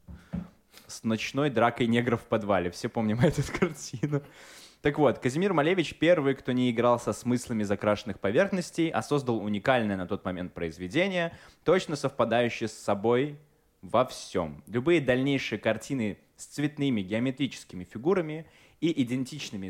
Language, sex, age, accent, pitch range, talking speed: Russian, male, 20-39, native, 105-145 Hz, 135 wpm